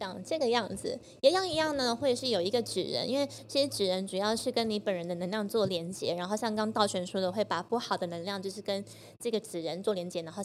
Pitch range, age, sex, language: 185-225 Hz, 20-39, female, Chinese